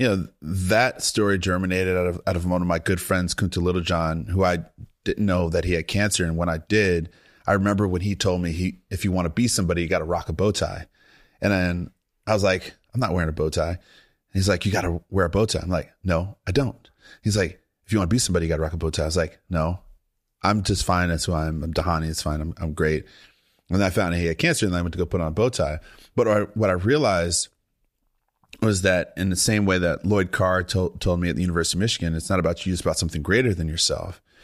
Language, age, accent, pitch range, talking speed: English, 30-49, American, 85-100 Hz, 275 wpm